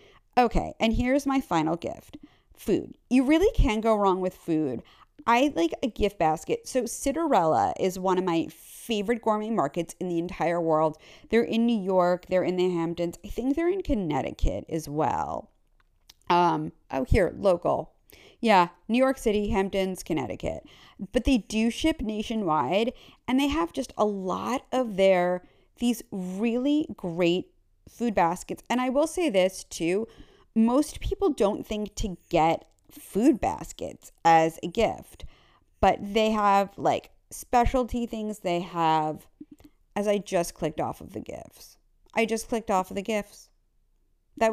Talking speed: 155 wpm